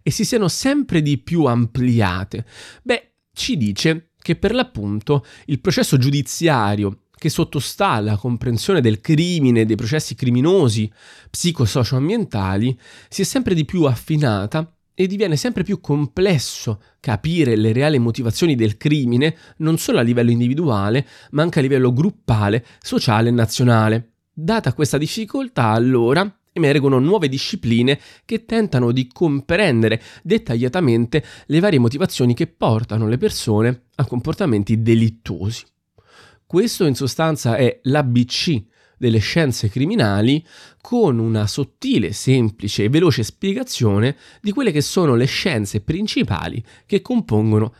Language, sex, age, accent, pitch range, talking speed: Italian, male, 20-39, native, 115-160 Hz, 130 wpm